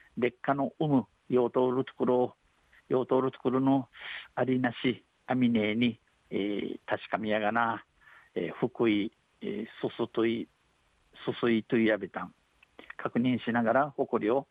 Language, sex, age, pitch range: Japanese, male, 50-69, 115-130 Hz